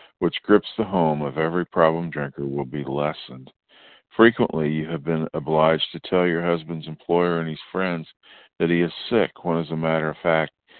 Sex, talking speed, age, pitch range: male, 190 wpm, 50-69, 75-90 Hz